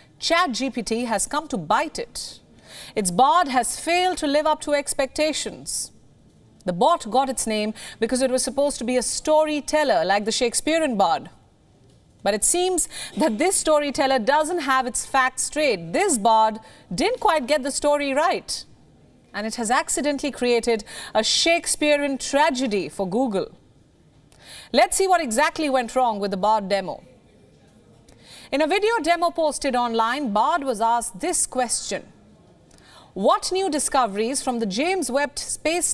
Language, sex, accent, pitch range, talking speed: English, female, Indian, 225-310 Hz, 150 wpm